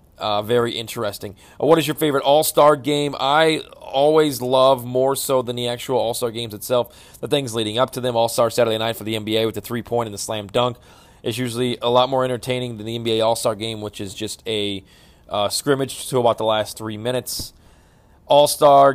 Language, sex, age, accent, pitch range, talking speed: English, male, 30-49, American, 110-130 Hz, 205 wpm